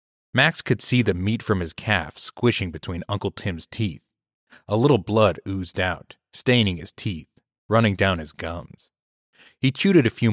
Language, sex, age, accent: English, male, 30-49, American